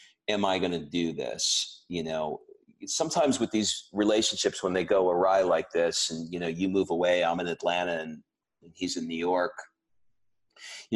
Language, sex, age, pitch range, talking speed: English, male, 40-59, 90-105 Hz, 185 wpm